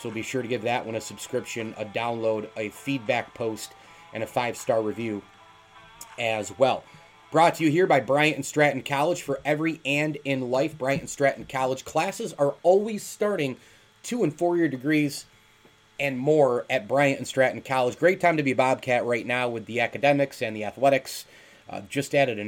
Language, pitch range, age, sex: English, 115-145 Hz, 30-49, male